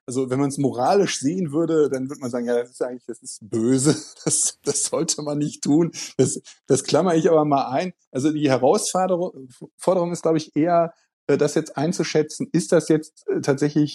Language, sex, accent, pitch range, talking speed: German, male, German, 130-155 Hz, 200 wpm